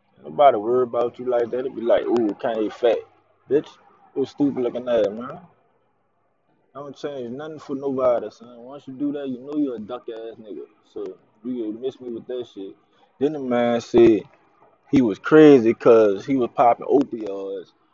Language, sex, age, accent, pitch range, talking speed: English, male, 20-39, American, 120-155 Hz, 185 wpm